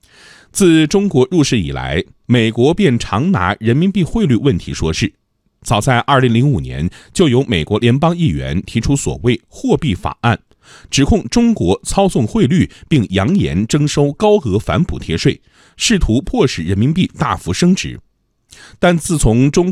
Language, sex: Chinese, male